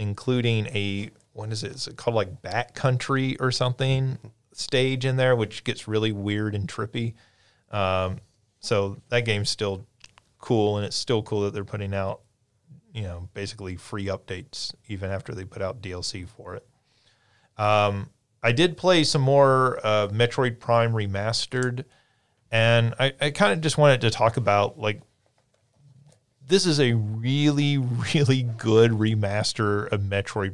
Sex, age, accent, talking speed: male, 30-49, American, 155 wpm